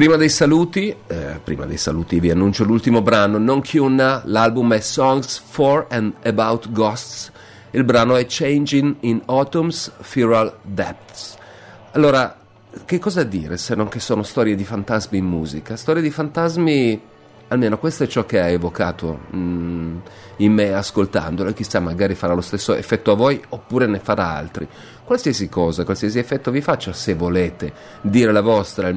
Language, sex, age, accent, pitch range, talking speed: Italian, male, 40-59, native, 95-125 Hz, 160 wpm